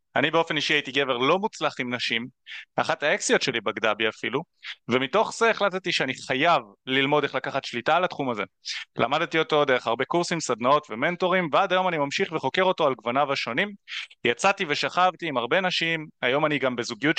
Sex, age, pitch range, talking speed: male, 30-49, 130-175 Hz, 180 wpm